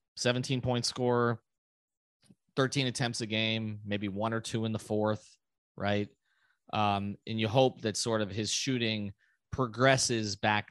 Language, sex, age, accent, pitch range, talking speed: English, male, 30-49, American, 105-130 Hz, 140 wpm